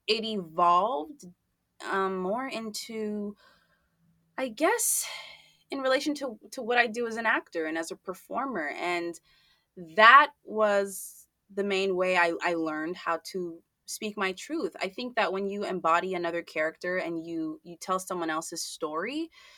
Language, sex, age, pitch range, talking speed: English, female, 20-39, 175-225 Hz, 155 wpm